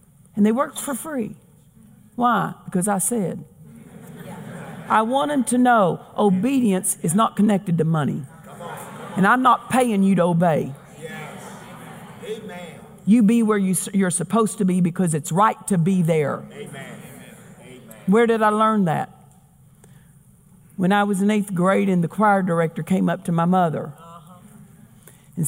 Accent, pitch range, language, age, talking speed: American, 170-220 Hz, English, 50-69, 145 wpm